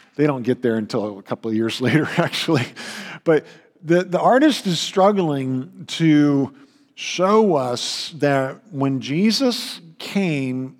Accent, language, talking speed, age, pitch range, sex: American, English, 135 wpm, 50-69, 125-160 Hz, male